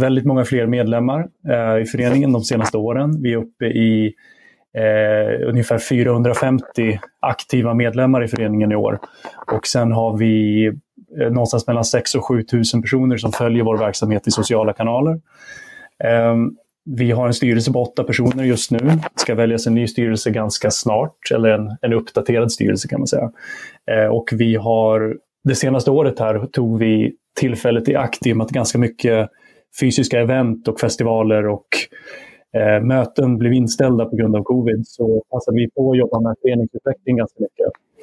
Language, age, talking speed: English, 20-39, 170 wpm